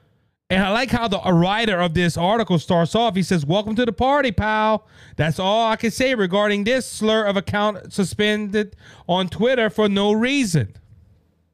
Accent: American